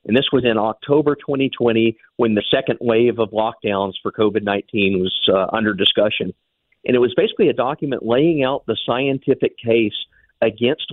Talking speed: 165 wpm